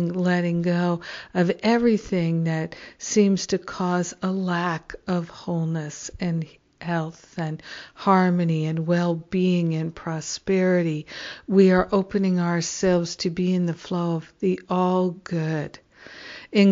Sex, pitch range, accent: female, 175-205 Hz, American